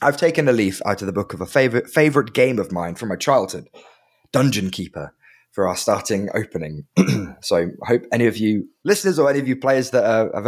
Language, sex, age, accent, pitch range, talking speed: English, male, 20-39, British, 110-150 Hz, 220 wpm